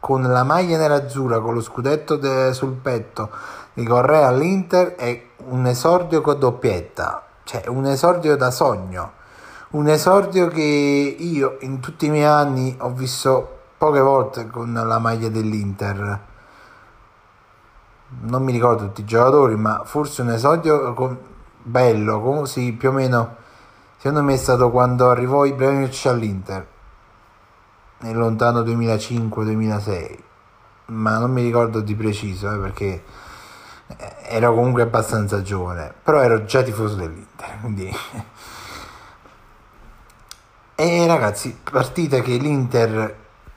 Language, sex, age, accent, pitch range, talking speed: Italian, male, 30-49, native, 110-135 Hz, 125 wpm